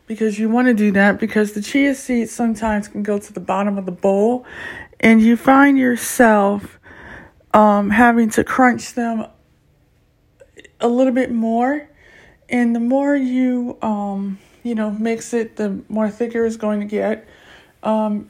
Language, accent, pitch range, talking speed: English, American, 220-260 Hz, 160 wpm